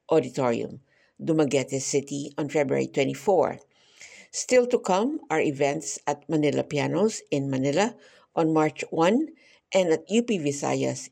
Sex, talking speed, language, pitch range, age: female, 125 wpm, English, 145-195 Hz, 50-69